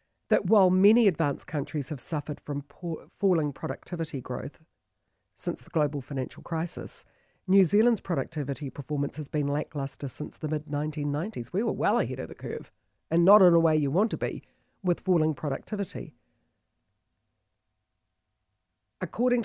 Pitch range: 140-180 Hz